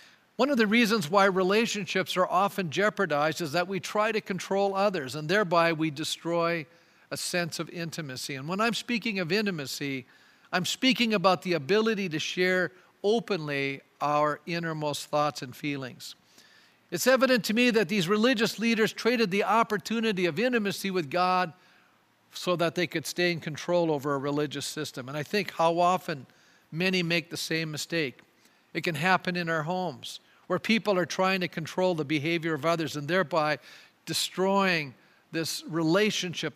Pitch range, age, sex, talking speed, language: 160-200 Hz, 50-69, male, 165 wpm, English